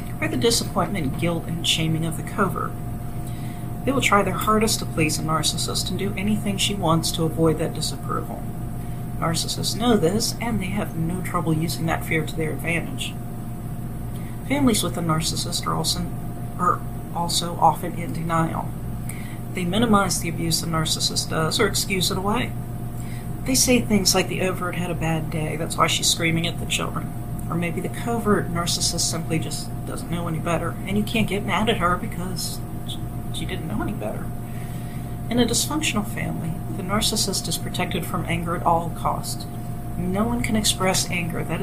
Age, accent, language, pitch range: 40-59, American, English, 120-165 Hz